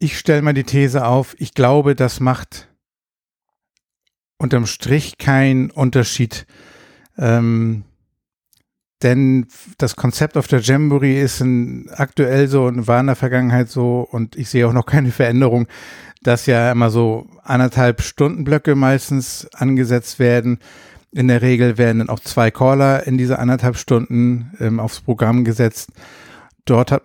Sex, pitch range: male, 115-130 Hz